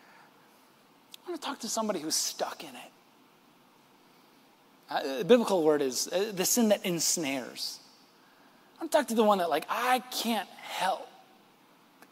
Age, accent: 30-49, American